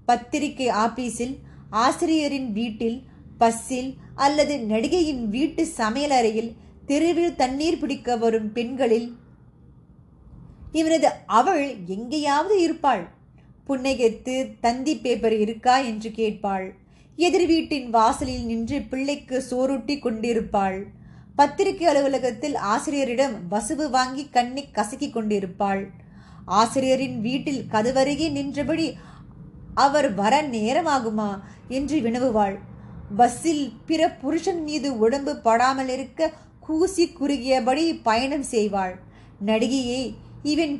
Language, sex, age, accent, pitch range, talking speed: Tamil, female, 20-39, native, 230-290 Hz, 80 wpm